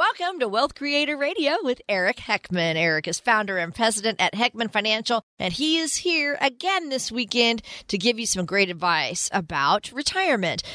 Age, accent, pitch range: 40-59, American, 190-275 Hz